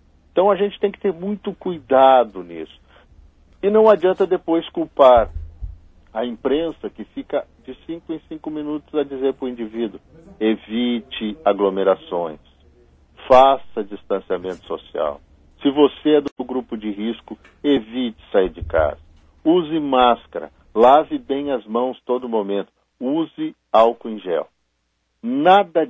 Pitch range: 85-135 Hz